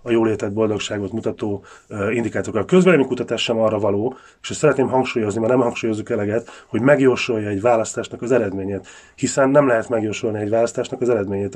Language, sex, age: Hungarian, male, 30-49